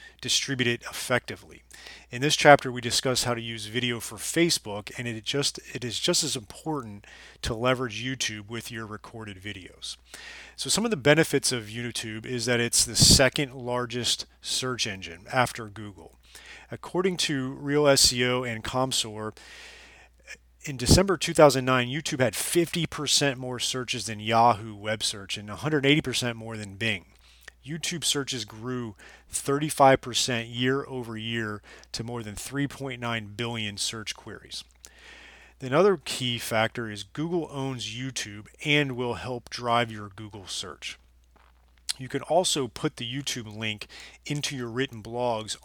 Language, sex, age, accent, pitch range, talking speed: English, male, 30-49, American, 110-135 Hz, 140 wpm